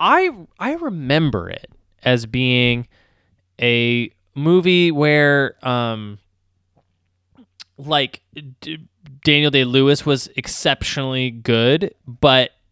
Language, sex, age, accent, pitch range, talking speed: English, male, 20-39, American, 105-150 Hz, 90 wpm